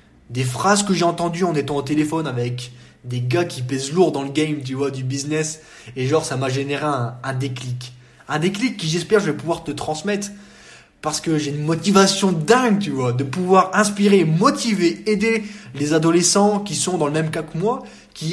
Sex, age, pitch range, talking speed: male, 20-39, 140-195 Hz, 205 wpm